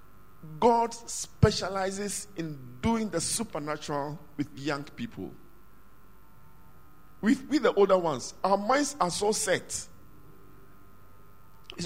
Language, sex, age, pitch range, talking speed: English, male, 50-69, 150-225 Hz, 100 wpm